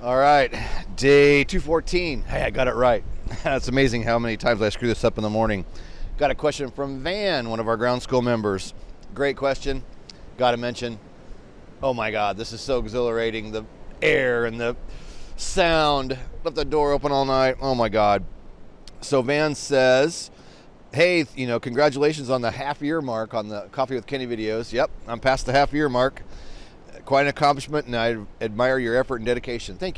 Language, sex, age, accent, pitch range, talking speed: English, male, 30-49, American, 115-140 Hz, 185 wpm